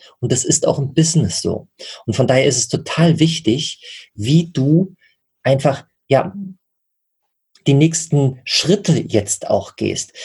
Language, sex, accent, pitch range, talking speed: German, male, German, 120-160 Hz, 140 wpm